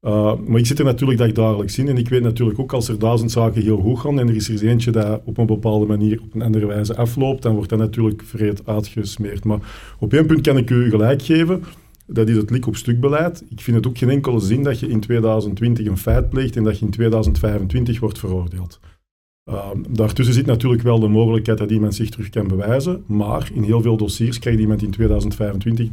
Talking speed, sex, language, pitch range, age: 230 wpm, male, Dutch, 105-120 Hz, 50-69